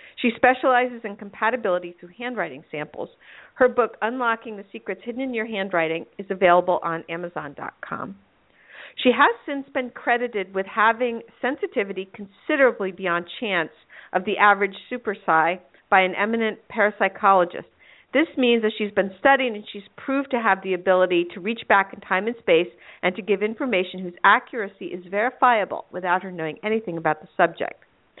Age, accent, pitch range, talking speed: 50-69, American, 185-235 Hz, 155 wpm